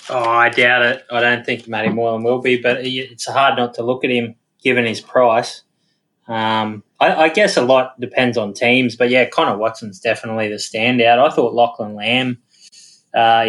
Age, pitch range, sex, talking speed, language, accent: 20-39, 110-125 Hz, male, 190 wpm, English, Australian